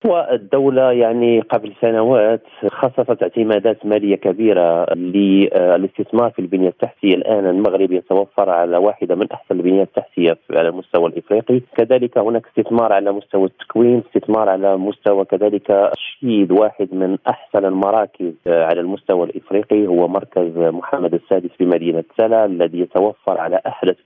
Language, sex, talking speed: Arabic, male, 130 wpm